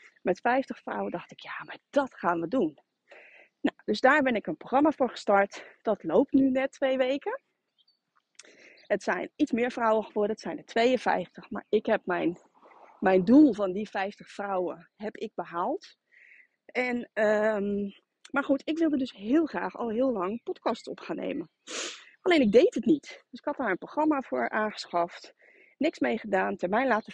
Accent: Dutch